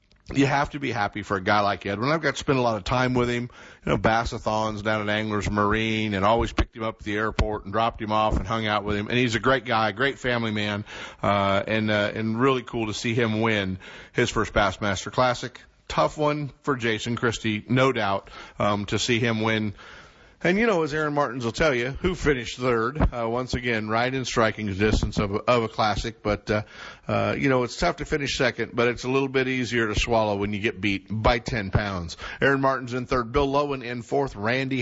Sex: male